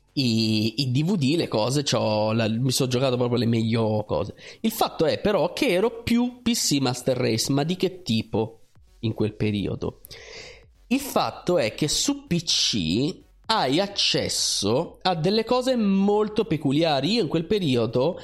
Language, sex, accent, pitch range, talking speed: Italian, male, native, 120-185 Hz, 155 wpm